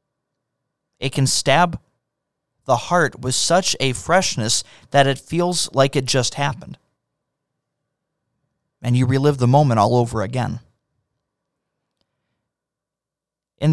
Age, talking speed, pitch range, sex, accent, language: 30-49, 110 wpm, 115-170 Hz, male, American, English